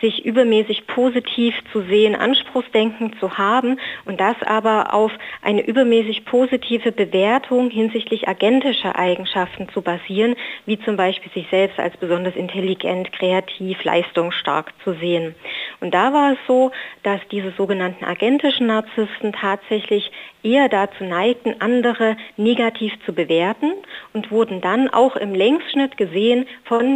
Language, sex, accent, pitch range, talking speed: German, female, German, 190-235 Hz, 130 wpm